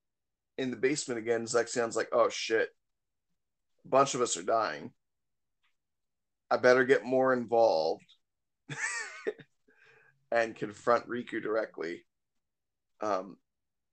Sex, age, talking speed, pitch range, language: male, 20-39, 105 wpm, 110-130 Hz, English